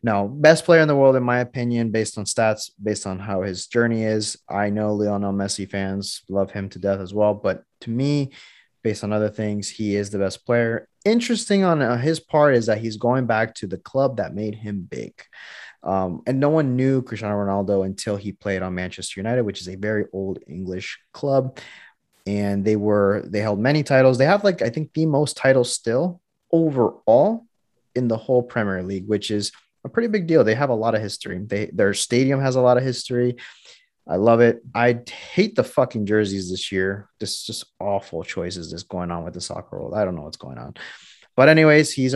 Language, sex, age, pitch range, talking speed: English, male, 30-49, 100-135 Hz, 215 wpm